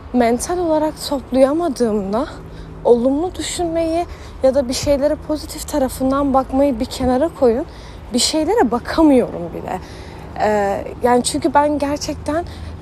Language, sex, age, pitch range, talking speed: Turkish, female, 30-49, 215-300 Hz, 110 wpm